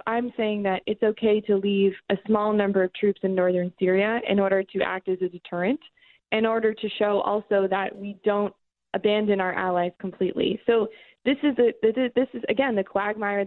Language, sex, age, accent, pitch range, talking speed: English, female, 20-39, American, 185-210 Hz, 190 wpm